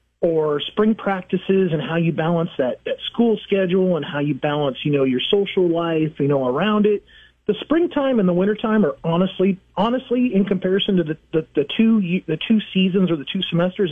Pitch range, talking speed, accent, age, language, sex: 160-210 Hz, 200 wpm, American, 40-59, English, male